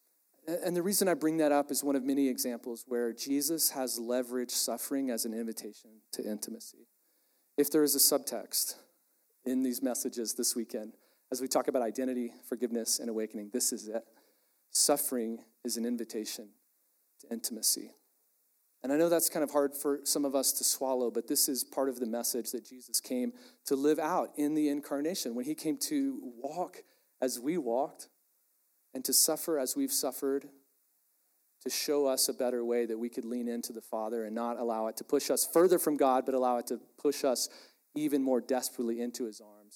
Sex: male